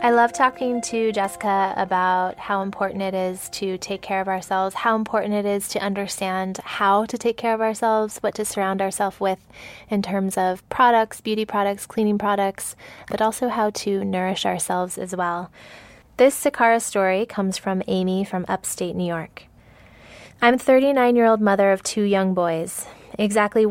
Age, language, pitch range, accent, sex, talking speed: 20-39, English, 185-215 Hz, American, female, 170 wpm